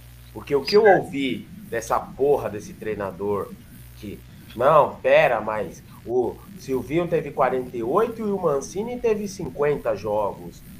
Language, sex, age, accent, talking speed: Portuguese, male, 20-39, Brazilian, 130 wpm